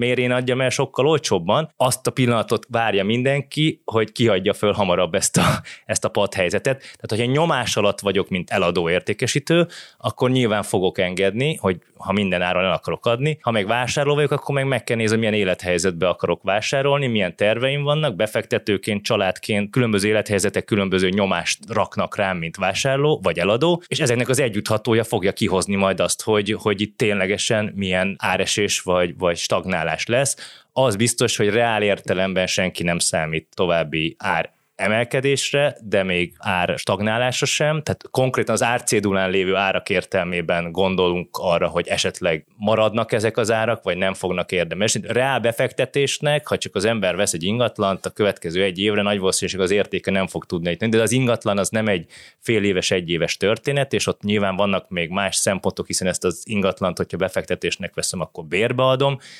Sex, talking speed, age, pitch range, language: male, 170 wpm, 20-39, 95-125 Hz, Hungarian